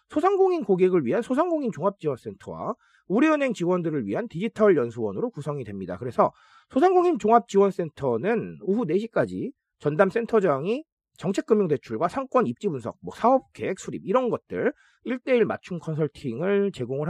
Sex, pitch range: male, 160-235 Hz